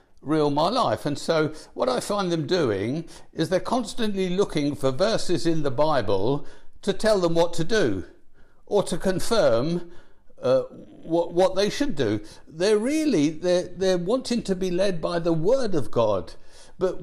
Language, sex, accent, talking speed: English, male, British, 170 wpm